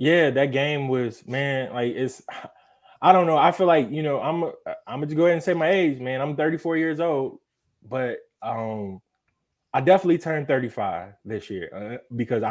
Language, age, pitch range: English, 20-39, 120-150 Hz